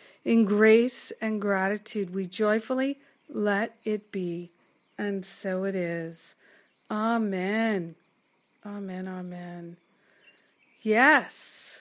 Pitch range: 195-235 Hz